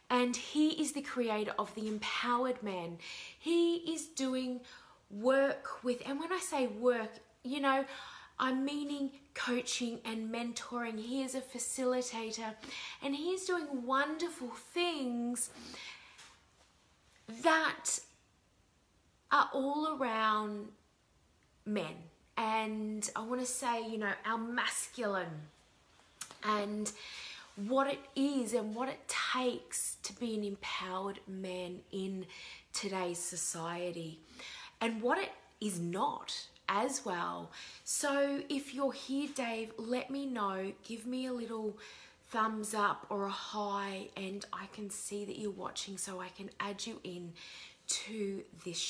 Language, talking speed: English, 130 wpm